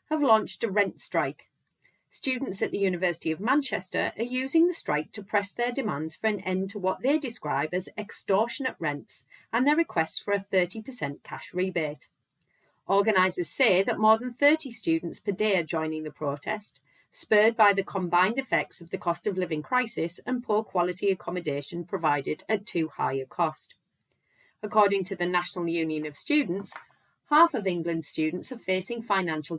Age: 30-49